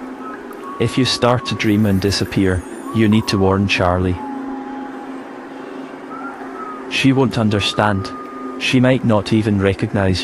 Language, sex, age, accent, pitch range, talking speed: English, male, 30-49, British, 100-120 Hz, 115 wpm